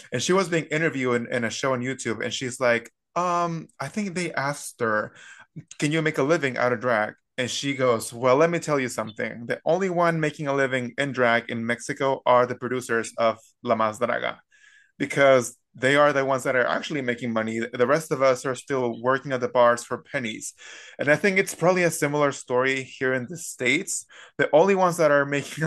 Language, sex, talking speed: English, male, 220 wpm